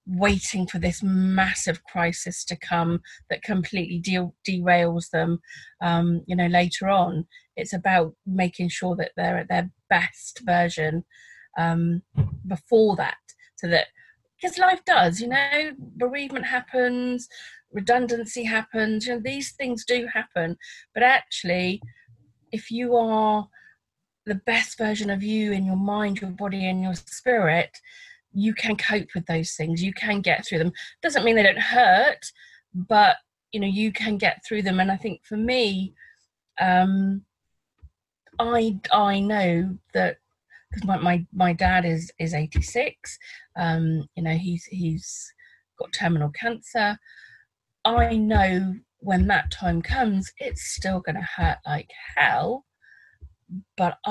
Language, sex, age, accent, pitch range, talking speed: English, female, 30-49, British, 175-225 Hz, 140 wpm